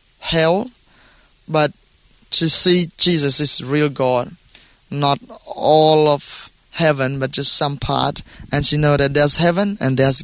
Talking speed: 140 wpm